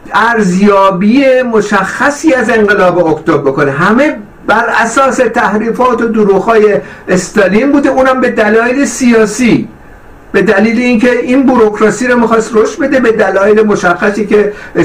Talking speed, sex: 125 wpm, male